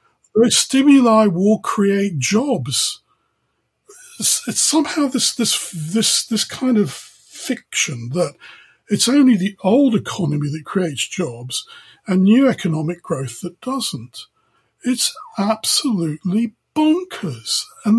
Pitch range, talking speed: 170-230 Hz, 105 wpm